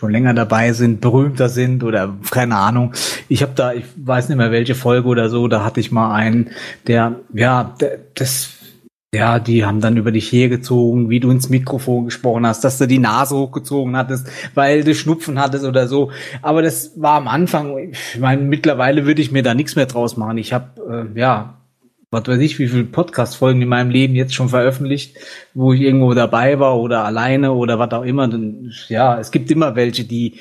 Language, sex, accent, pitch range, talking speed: German, male, German, 120-140 Hz, 205 wpm